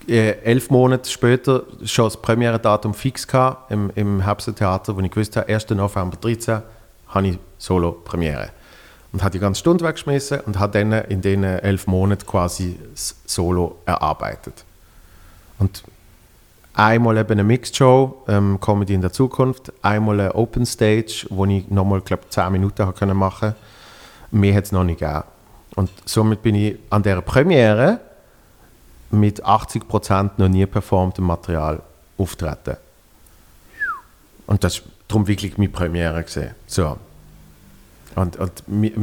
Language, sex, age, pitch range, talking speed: German, male, 40-59, 90-110 Hz, 135 wpm